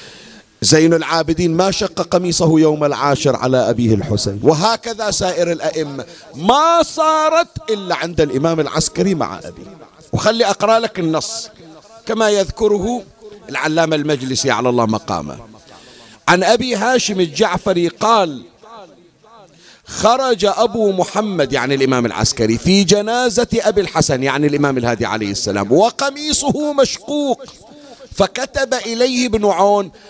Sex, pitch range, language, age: male, 155-225 Hz, Arabic, 50-69